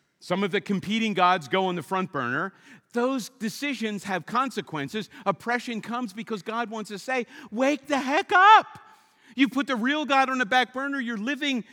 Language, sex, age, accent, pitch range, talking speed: English, male, 50-69, American, 175-255 Hz, 185 wpm